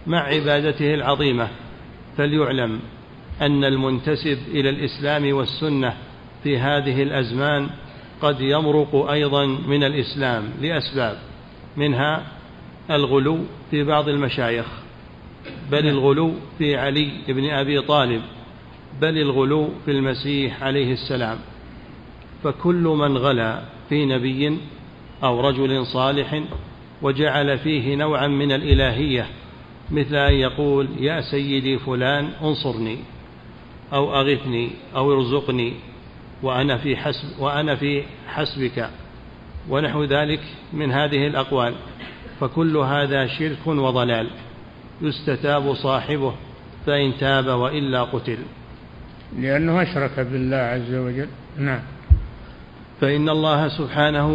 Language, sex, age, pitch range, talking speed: Arabic, male, 50-69, 130-145 Hz, 95 wpm